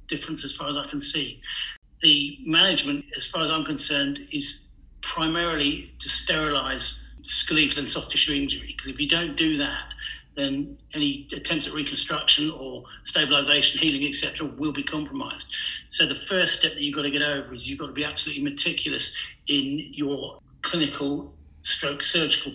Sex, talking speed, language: male, 170 wpm, English